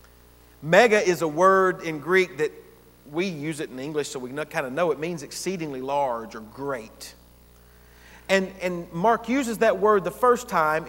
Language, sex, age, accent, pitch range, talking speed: English, male, 40-59, American, 115-180 Hz, 175 wpm